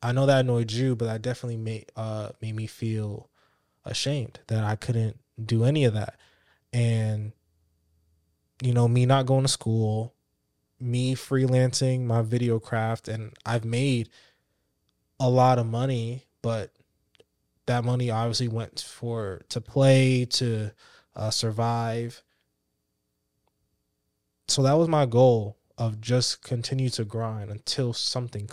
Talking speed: 135 wpm